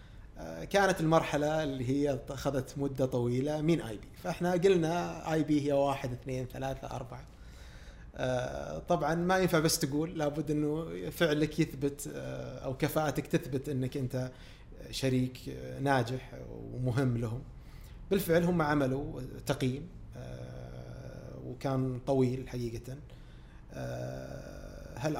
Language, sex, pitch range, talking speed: Arabic, male, 120-140 Hz, 105 wpm